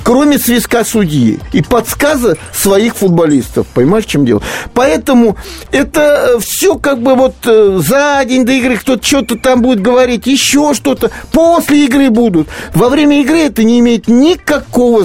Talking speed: 150 wpm